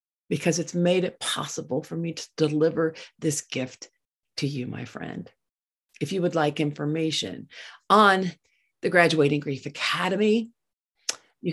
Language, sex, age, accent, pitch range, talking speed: English, female, 50-69, American, 130-180 Hz, 135 wpm